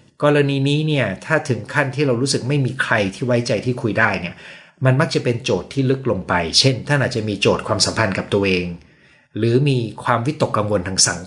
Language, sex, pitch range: Thai, male, 105-135 Hz